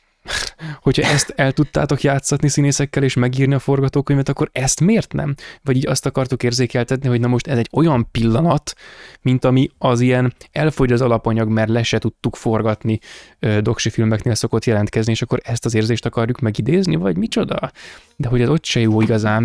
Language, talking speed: Hungarian, 180 wpm